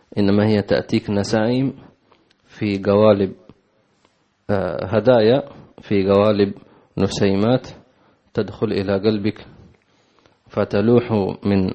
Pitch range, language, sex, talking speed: 100-110 Hz, English, male, 75 wpm